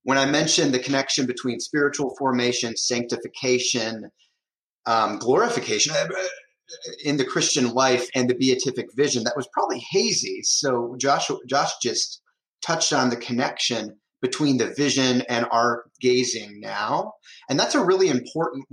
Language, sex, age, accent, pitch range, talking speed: English, male, 30-49, American, 125-155 Hz, 140 wpm